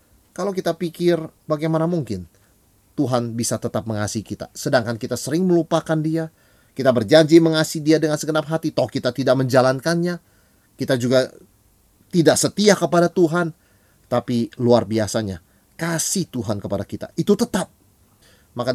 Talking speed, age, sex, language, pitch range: 135 wpm, 30-49, male, Indonesian, 105-150 Hz